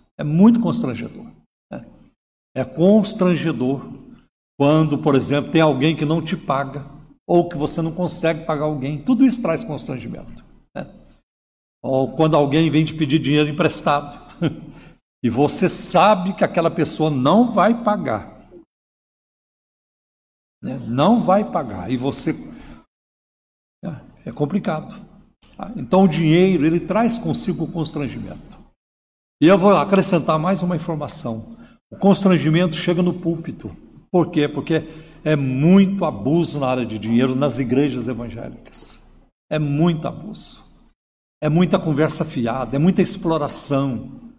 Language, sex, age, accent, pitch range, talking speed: Portuguese, male, 60-79, Brazilian, 145-190 Hz, 130 wpm